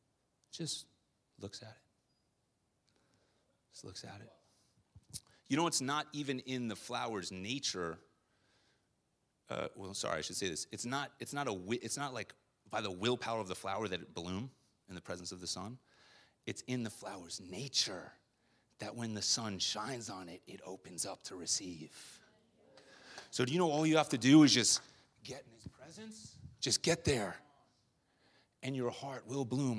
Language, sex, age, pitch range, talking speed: English, male, 30-49, 105-145 Hz, 170 wpm